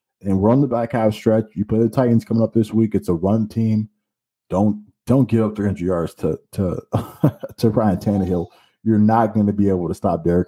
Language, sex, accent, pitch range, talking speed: English, male, American, 100-110 Hz, 225 wpm